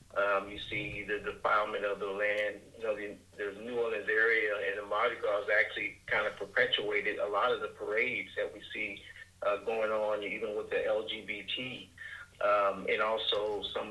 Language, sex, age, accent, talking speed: English, male, 50-69, American, 180 wpm